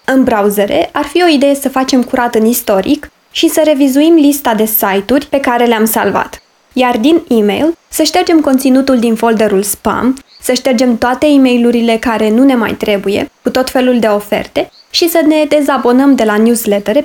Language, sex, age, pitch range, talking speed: Romanian, female, 20-39, 215-275 Hz, 185 wpm